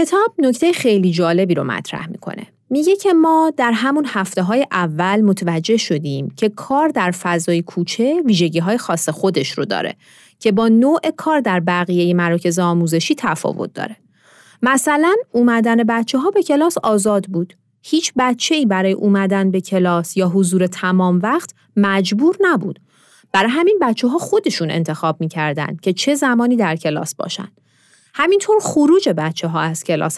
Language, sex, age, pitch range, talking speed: Persian, female, 30-49, 180-275 Hz, 155 wpm